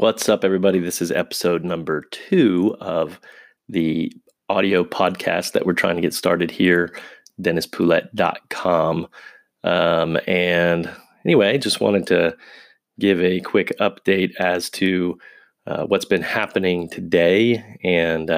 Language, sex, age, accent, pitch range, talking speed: English, male, 30-49, American, 90-100 Hz, 125 wpm